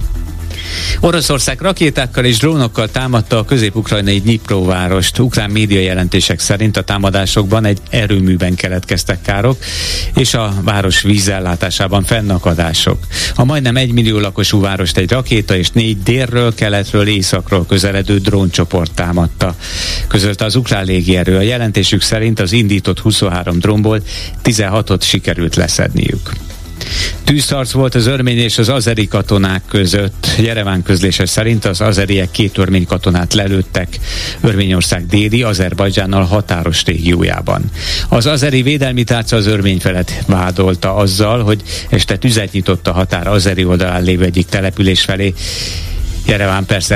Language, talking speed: Hungarian, 130 wpm